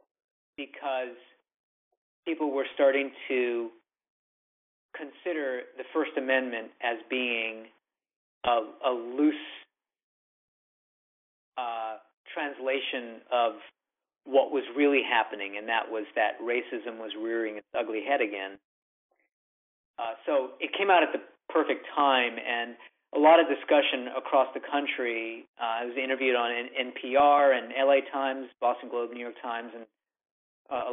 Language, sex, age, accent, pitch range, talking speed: English, male, 40-59, American, 115-145 Hz, 130 wpm